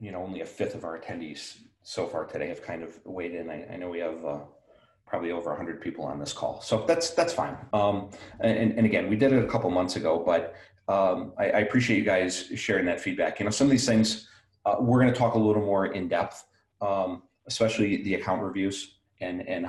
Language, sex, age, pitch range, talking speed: English, male, 30-49, 100-135 Hz, 230 wpm